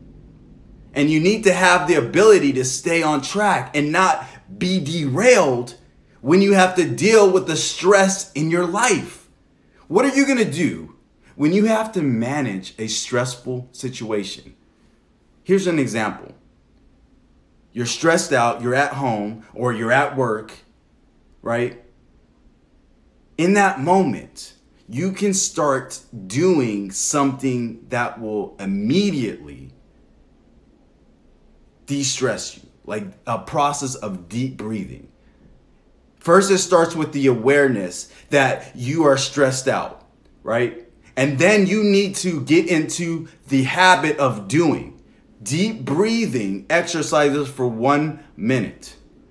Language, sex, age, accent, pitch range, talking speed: English, male, 30-49, American, 130-180 Hz, 125 wpm